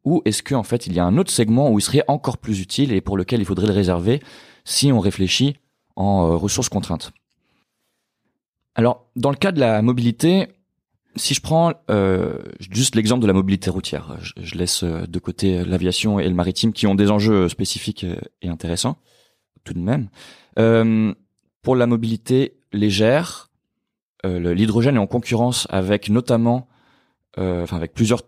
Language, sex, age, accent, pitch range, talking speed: French, male, 20-39, French, 95-120 Hz, 175 wpm